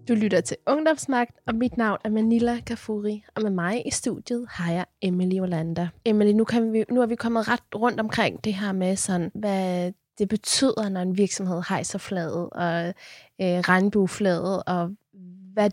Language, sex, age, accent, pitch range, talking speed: Danish, female, 20-39, native, 180-215 Hz, 170 wpm